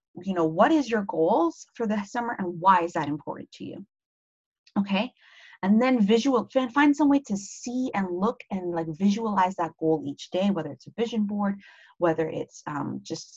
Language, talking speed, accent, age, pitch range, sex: English, 195 wpm, American, 30-49, 175-250 Hz, female